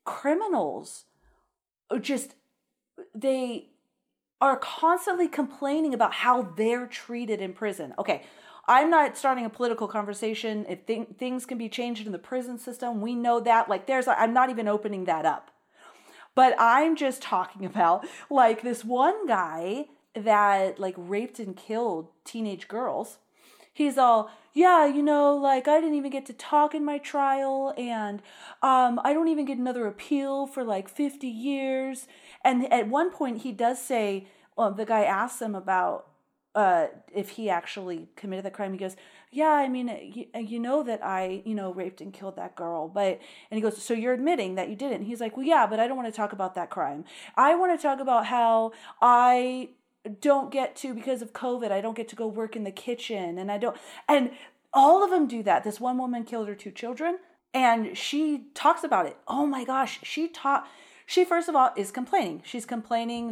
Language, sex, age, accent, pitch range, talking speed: English, female, 30-49, American, 210-275 Hz, 190 wpm